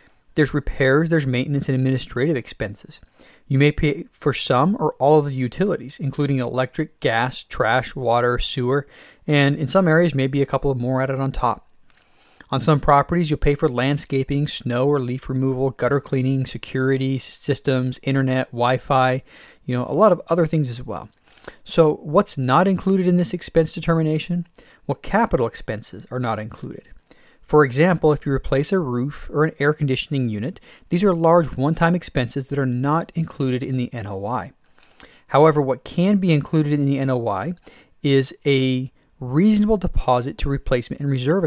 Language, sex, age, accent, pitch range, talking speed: English, male, 30-49, American, 130-160 Hz, 170 wpm